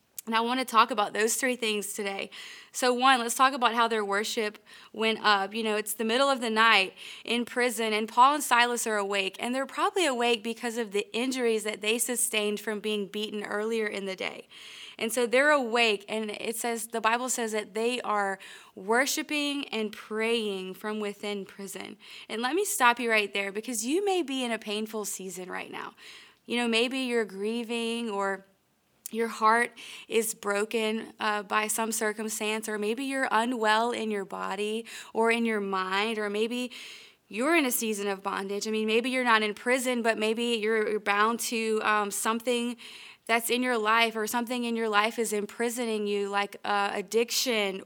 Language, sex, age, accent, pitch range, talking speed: English, female, 20-39, American, 210-240 Hz, 190 wpm